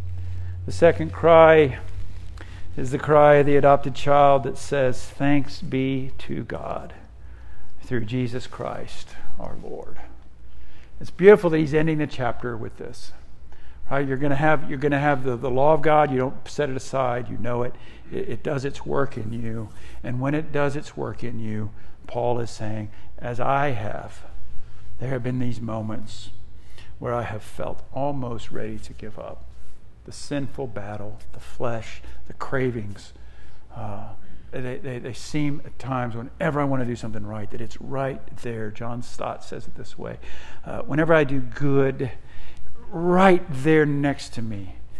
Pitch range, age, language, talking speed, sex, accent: 105-140 Hz, 60-79, English, 165 wpm, male, American